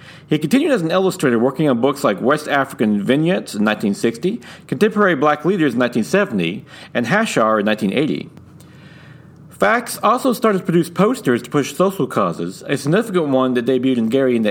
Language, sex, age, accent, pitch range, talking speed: English, male, 40-59, American, 125-170 Hz, 175 wpm